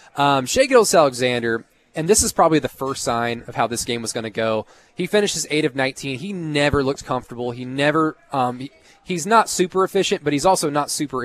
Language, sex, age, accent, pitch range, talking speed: English, male, 20-39, American, 120-145 Hz, 220 wpm